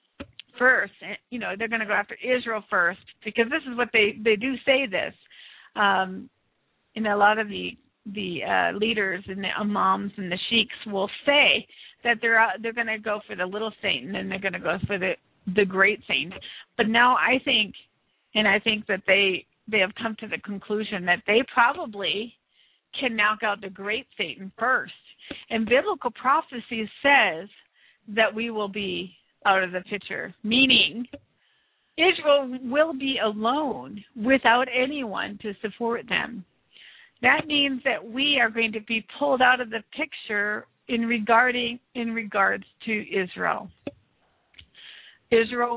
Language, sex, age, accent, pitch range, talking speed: English, female, 50-69, American, 205-245 Hz, 165 wpm